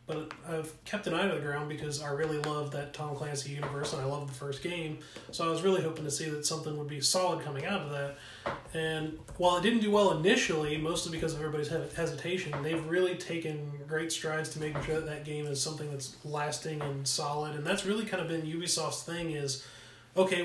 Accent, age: American, 30-49